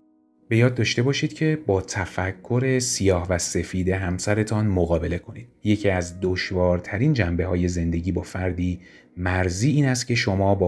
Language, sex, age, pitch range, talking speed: Persian, male, 30-49, 90-110 Hz, 145 wpm